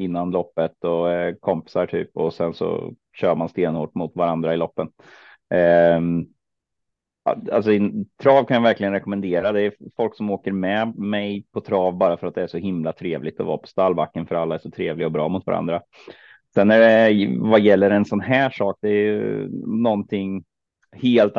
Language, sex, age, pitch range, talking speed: Swedish, male, 30-49, 85-105 Hz, 185 wpm